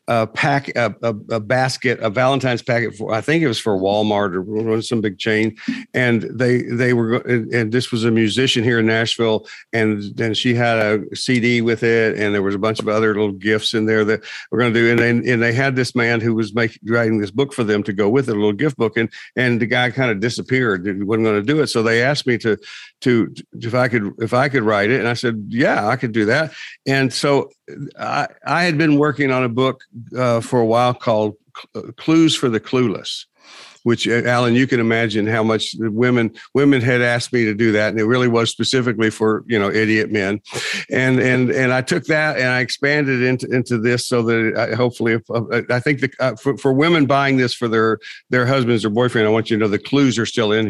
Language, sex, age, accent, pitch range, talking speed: English, male, 50-69, American, 110-130 Hz, 235 wpm